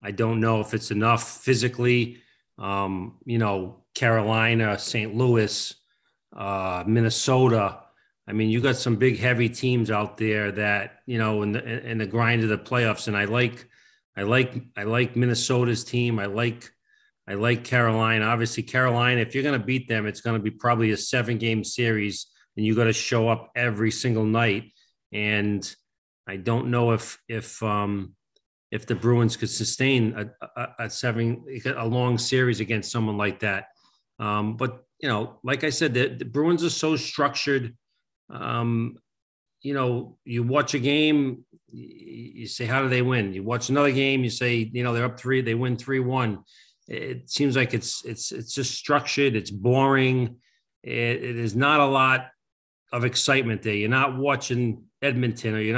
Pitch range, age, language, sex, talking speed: 110-130 Hz, 40-59, English, male, 175 wpm